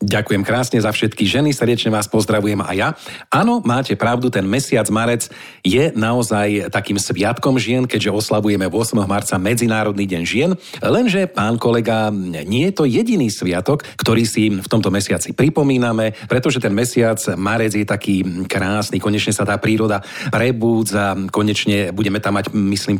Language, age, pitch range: Slovak, 40-59, 105-125 Hz